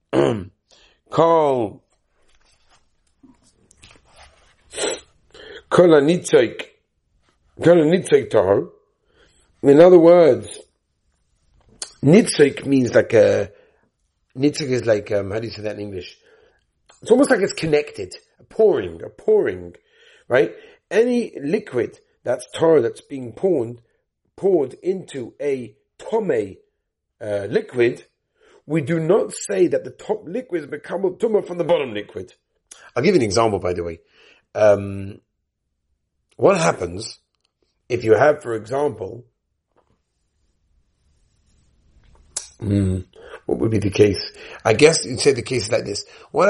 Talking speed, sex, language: 110 wpm, male, English